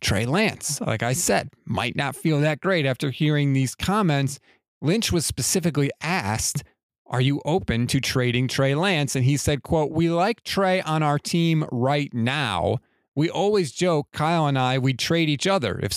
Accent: American